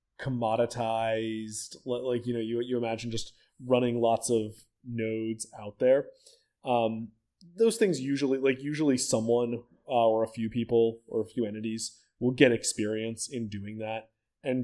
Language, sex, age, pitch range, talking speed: English, male, 20-39, 110-140 Hz, 150 wpm